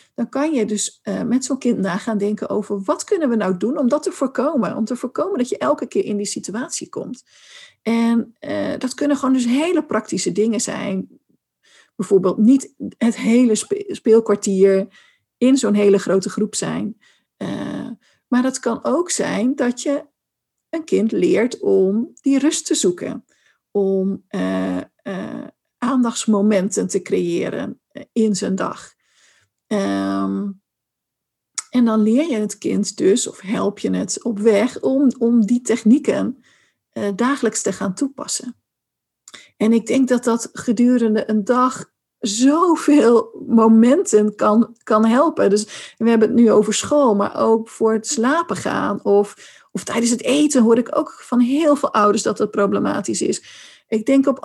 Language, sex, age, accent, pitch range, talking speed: Dutch, female, 50-69, Dutch, 210-270 Hz, 155 wpm